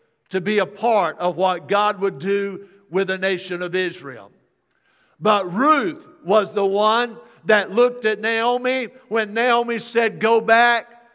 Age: 50-69